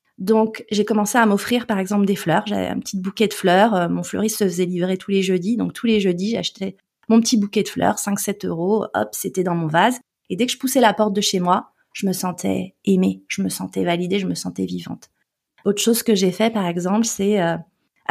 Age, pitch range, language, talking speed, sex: 30-49, 190-230 Hz, French, 240 wpm, female